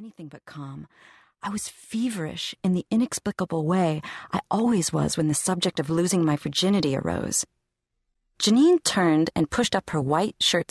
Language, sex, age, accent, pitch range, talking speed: English, female, 40-59, American, 150-195 Hz, 160 wpm